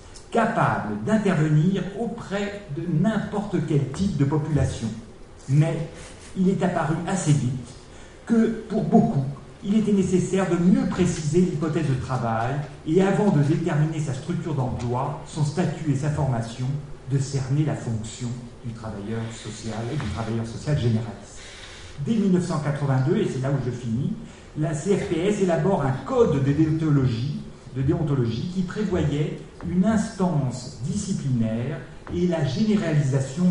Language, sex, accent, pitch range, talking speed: French, male, French, 125-180 Hz, 135 wpm